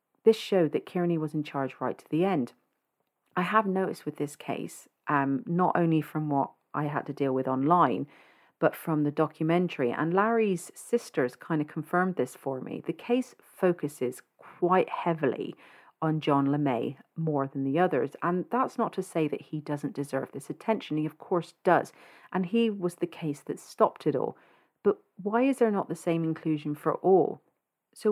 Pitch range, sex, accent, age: 140-185 Hz, female, British, 40-59